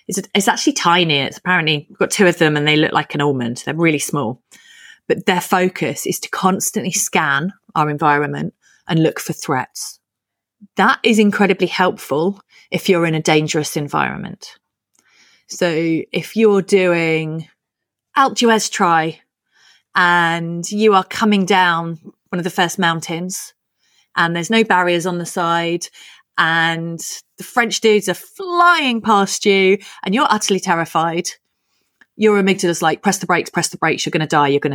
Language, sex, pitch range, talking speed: English, female, 160-205 Hz, 160 wpm